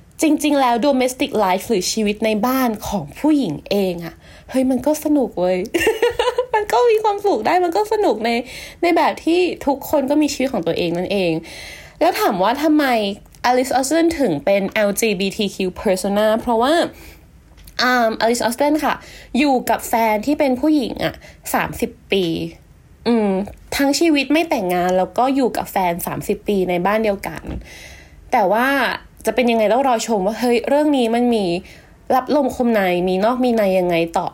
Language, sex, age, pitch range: Thai, female, 20-39, 200-285 Hz